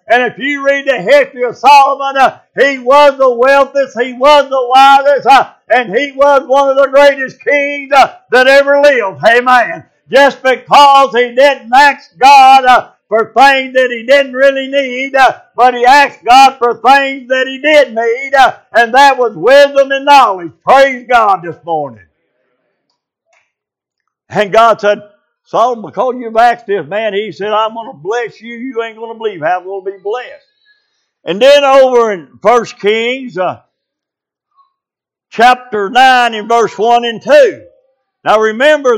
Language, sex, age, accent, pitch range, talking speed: English, male, 60-79, American, 230-280 Hz, 170 wpm